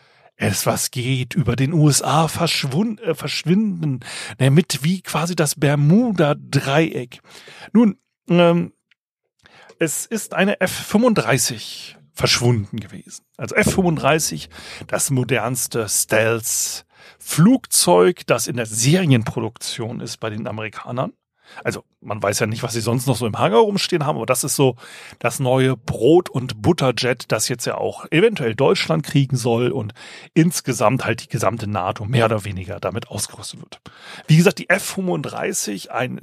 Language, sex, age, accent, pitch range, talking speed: German, male, 40-59, German, 115-165 Hz, 135 wpm